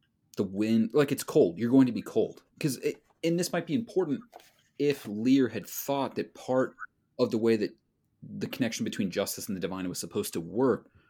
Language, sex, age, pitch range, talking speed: English, male, 30-49, 100-145 Hz, 200 wpm